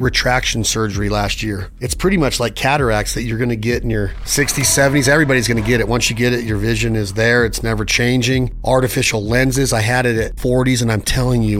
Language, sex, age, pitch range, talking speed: English, male, 40-59, 115-135 Hz, 235 wpm